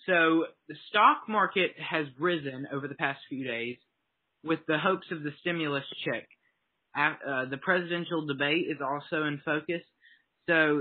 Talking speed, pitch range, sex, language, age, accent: 150 wpm, 135-165 Hz, male, English, 20-39, American